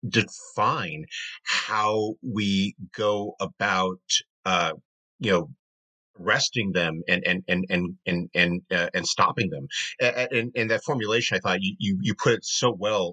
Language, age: English, 50-69